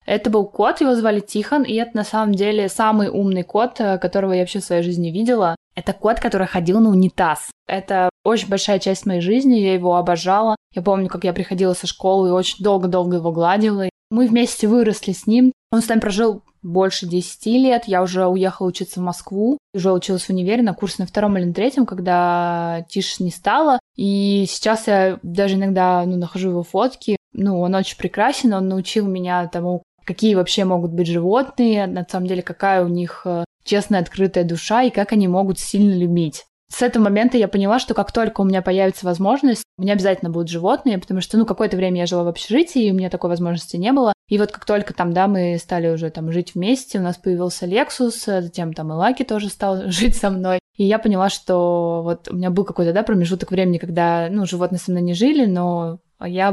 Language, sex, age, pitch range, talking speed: Russian, female, 20-39, 180-215 Hz, 210 wpm